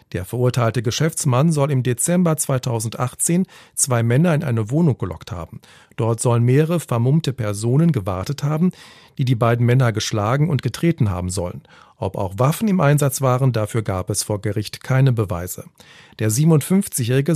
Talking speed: 155 wpm